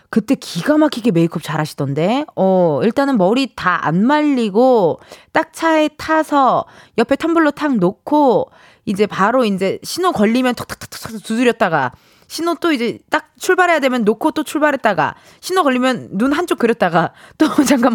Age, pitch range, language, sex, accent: 20-39, 185-290 Hz, Korean, female, native